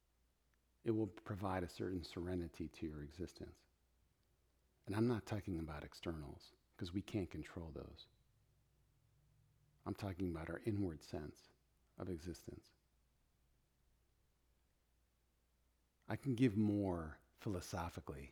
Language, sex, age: English, male, 50-69